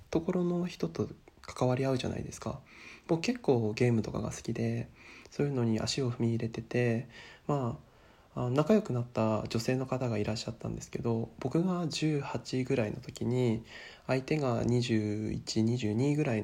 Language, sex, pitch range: Japanese, male, 115-145 Hz